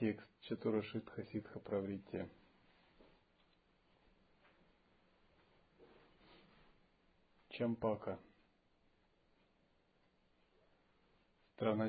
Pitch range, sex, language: 105-125 Hz, male, Russian